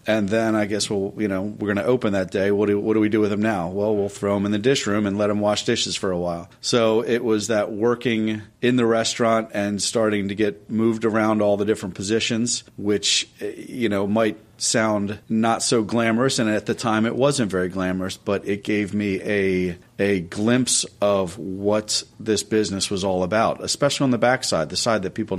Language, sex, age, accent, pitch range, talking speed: English, male, 40-59, American, 95-110 Hz, 220 wpm